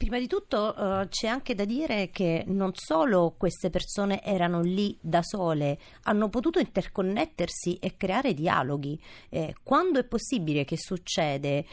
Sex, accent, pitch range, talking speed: female, native, 170-230 Hz, 150 wpm